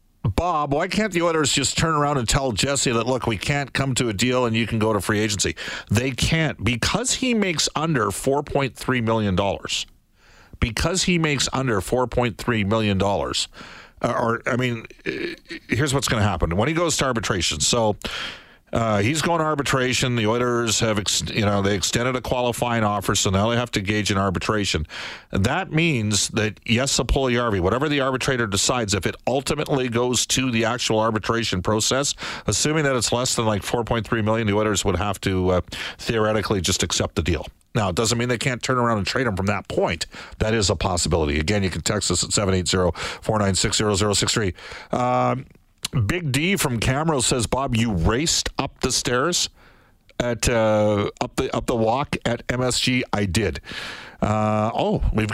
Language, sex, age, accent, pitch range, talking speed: English, male, 50-69, American, 105-135 Hz, 180 wpm